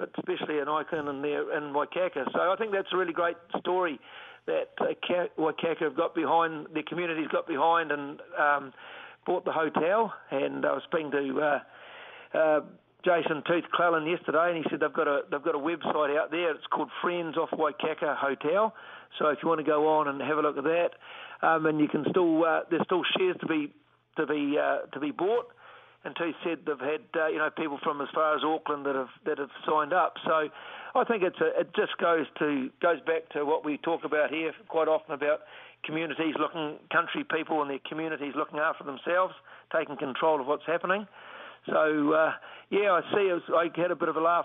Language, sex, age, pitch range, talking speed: English, male, 50-69, 150-170 Hz, 210 wpm